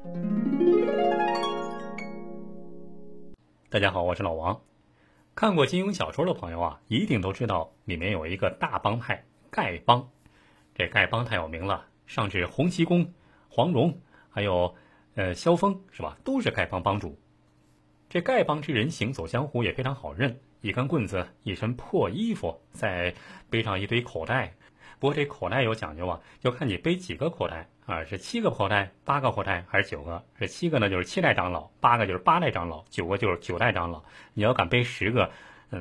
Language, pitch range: Chinese, 85-140 Hz